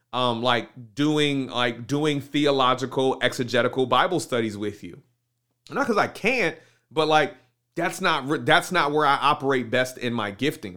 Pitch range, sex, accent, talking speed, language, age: 125-155 Hz, male, American, 155 wpm, English, 30-49